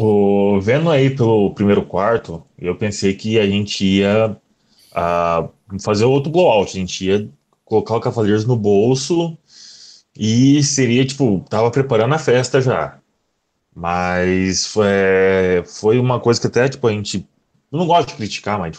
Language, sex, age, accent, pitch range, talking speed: Portuguese, male, 20-39, Brazilian, 100-130 Hz, 160 wpm